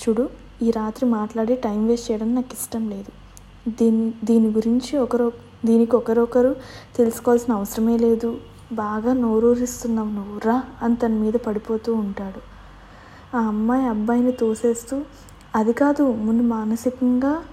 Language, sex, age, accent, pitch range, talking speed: English, female, 20-39, Indian, 225-250 Hz, 115 wpm